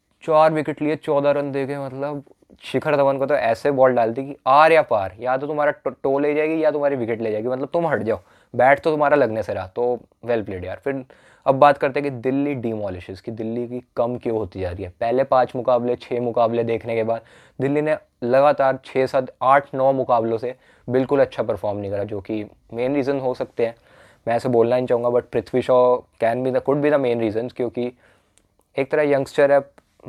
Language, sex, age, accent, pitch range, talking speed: English, male, 20-39, Indian, 115-140 Hz, 120 wpm